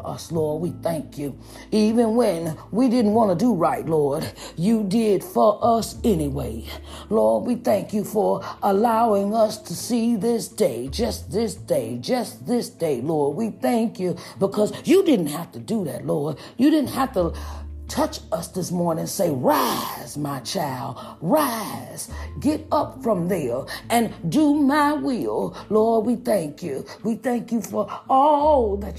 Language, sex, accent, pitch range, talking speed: English, female, American, 195-285 Hz, 165 wpm